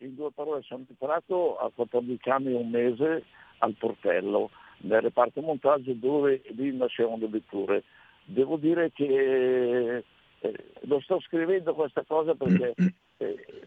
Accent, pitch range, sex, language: native, 125-155 Hz, male, Italian